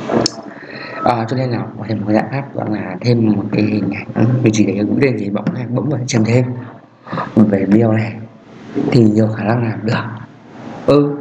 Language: Vietnamese